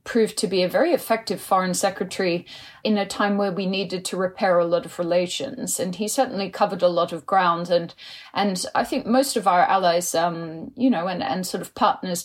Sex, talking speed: female, 215 wpm